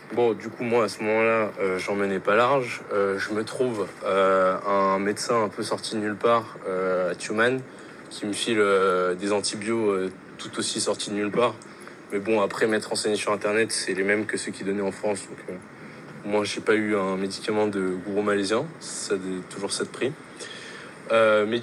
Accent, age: French, 20-39